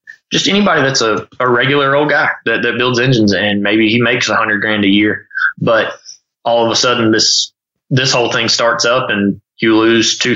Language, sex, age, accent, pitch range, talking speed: English, male, 20-39, American, 105-125 Hz, 210 wpm